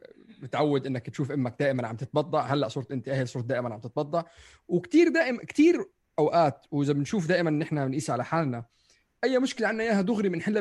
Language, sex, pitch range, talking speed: Arabic, male, 125-170 Hz, 180 wpm